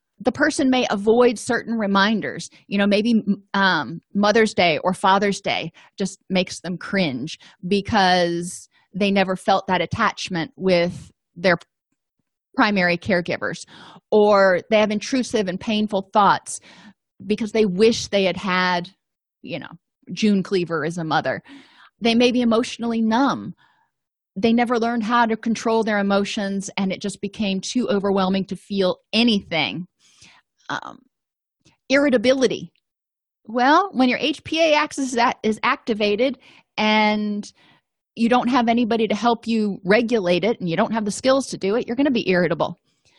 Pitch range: 185-240 Hz